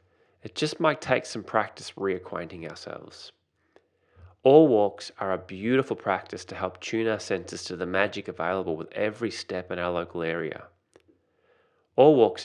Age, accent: 20-39, Australian